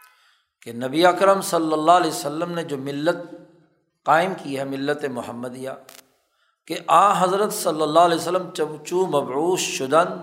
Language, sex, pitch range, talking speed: Urdu, male, 150-185 Hz, 145 wpm